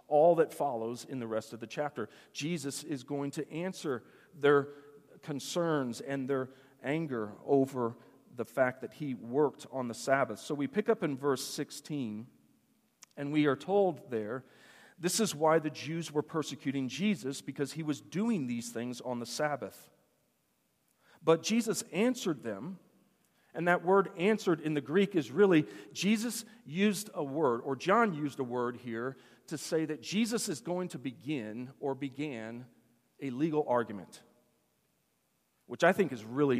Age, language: 40-59, English